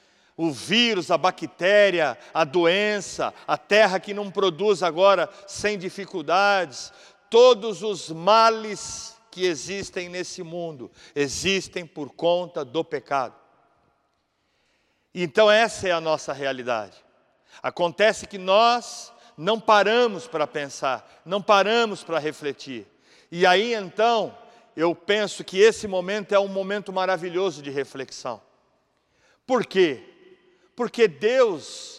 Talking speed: 115 wpm